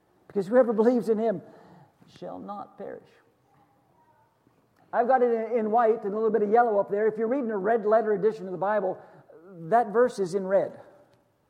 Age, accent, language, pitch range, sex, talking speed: 50-69, American, English, 180-225 Hz, male, 190 wpm